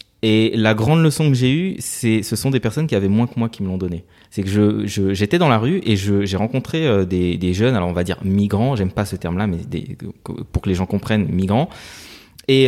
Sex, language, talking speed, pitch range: male, French, 255 wpm, 100-130 Hz